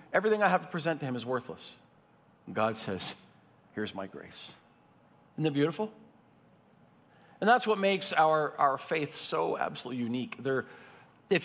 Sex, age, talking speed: male, 50-69, 145 wpm